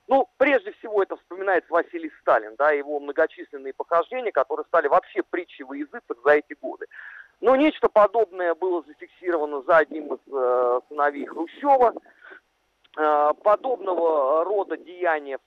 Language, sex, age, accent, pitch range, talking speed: Russian, male, 40-59, native, 160-240 Hz, 130 wpm